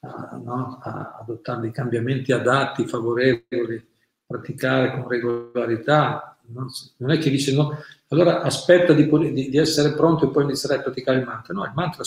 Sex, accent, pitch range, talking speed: male, native, 125-150 Hz, 145 wpm